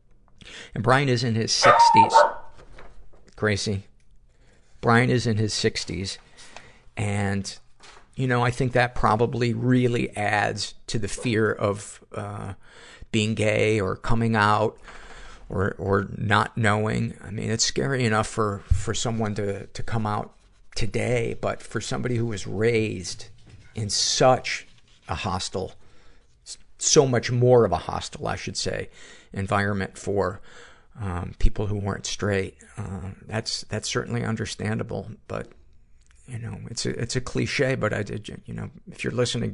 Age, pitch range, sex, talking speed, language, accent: 50-69, 95-115 Hz, male, 145 wpm, English, American